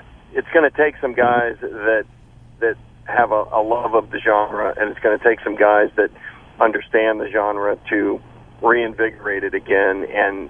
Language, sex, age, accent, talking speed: English, male, 50-69, American, 175 wpm